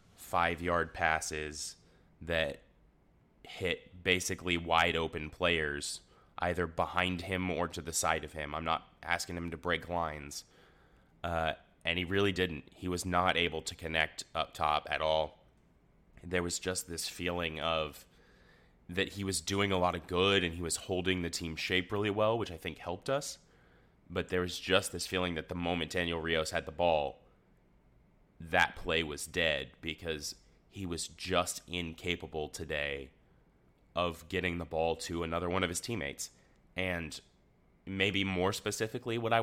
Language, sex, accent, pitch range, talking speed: English, male, American, 80-90 Hz, 165 wpm